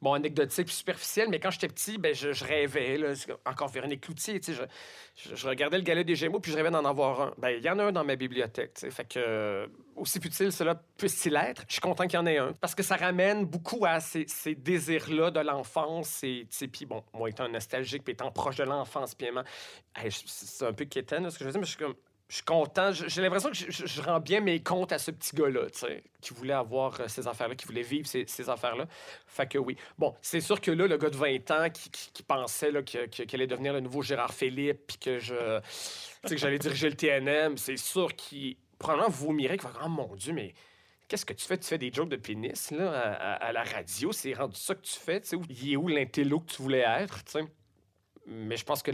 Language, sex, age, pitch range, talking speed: French, male, 30-49, 125-175 Hz, 245 wpm